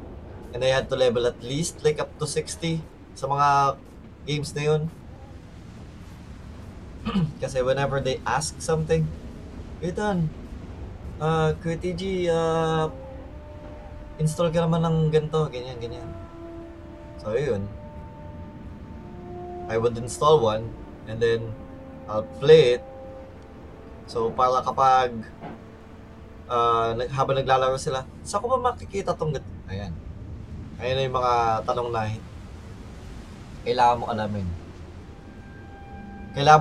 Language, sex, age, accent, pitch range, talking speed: Filipino, male, 20-39, native, 90-140 Hz, 110 wpm